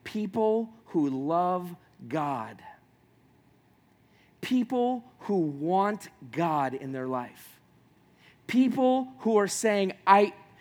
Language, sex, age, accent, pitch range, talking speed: English, male, 40-59, American, 135-230 Hz, 90 wpm